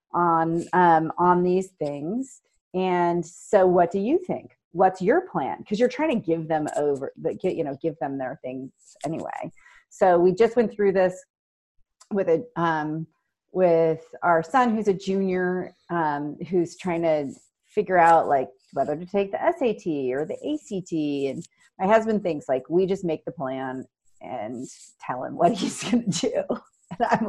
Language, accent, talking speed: English, American, 170 wpm